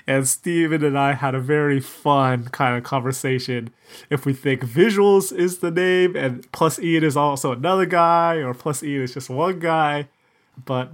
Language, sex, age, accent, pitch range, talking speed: English, male, 30-49, American, 120-155 Hz, 180 wpm